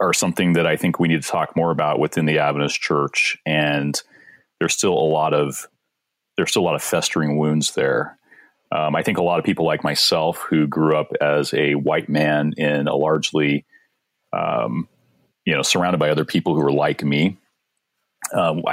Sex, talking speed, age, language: male, 190 wpm, 30-49, English